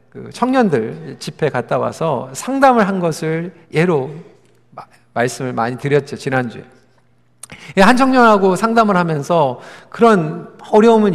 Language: Korean